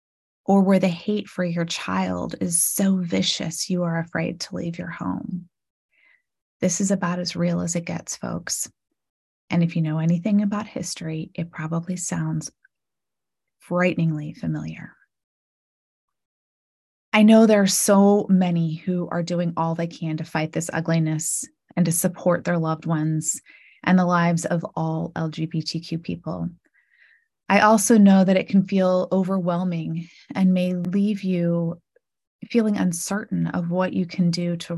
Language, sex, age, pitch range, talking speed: English, female, 20-39, 165-190 Hz, 150 wpm